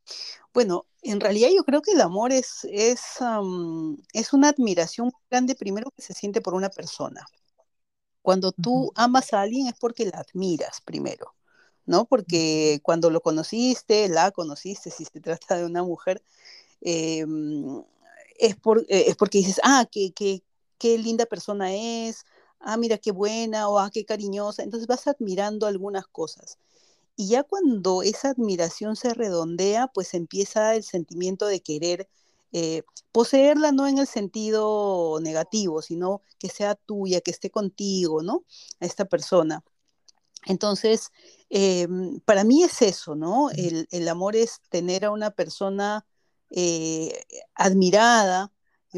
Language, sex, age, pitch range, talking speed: Spanish, female, 40-59, 175-230 Hz, 145 wpm